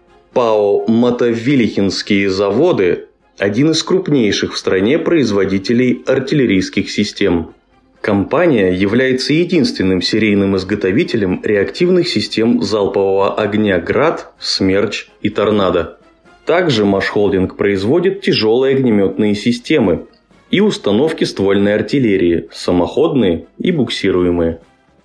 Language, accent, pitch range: Russian, native, 100-140 Hz